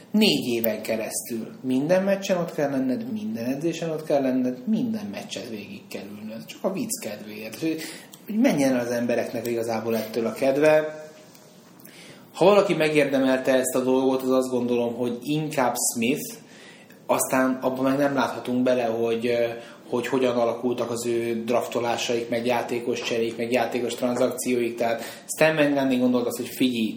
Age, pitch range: 20-39, 115-140 Hz